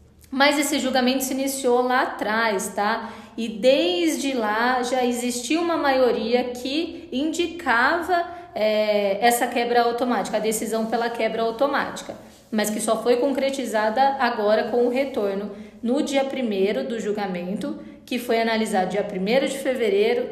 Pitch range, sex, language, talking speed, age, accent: 210-275 Hz, female, Portuguese, 140 wpm, 20-39, Brazilian